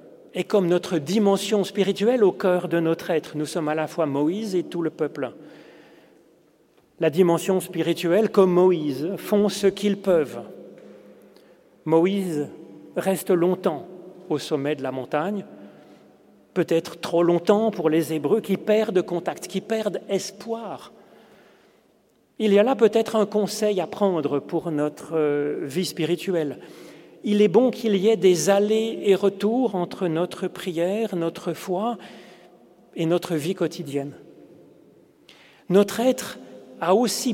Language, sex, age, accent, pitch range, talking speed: French, male, 40-59, French, 165-210 Hz, 135 wpm